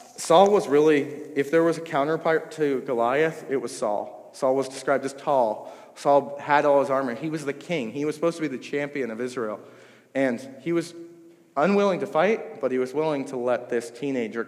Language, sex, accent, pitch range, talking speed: English, male, American, 120-150 Hz, 205 wpm